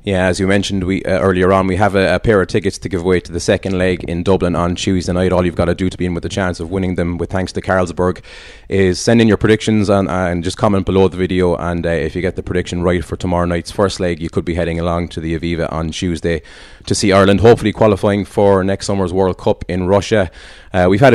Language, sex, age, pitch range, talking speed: English, male, 20-39, 90-105 Hz, 265 wpm